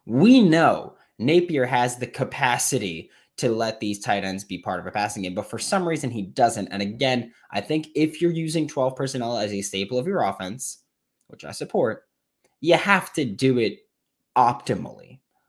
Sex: male